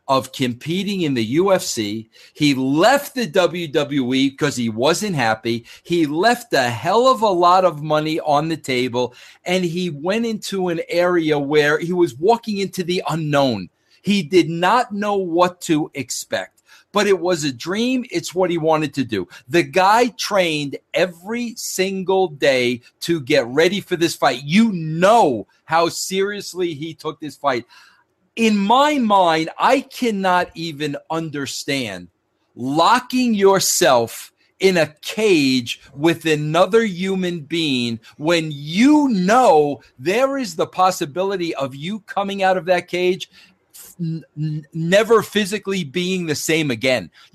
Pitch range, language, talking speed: 150-195 Hz, English, 140 wpm